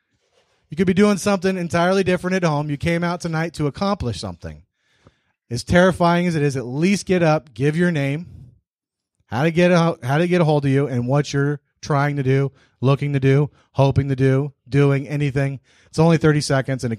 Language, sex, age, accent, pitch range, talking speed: English, male, 30-49, American, 130-150 Hz, 200 wpm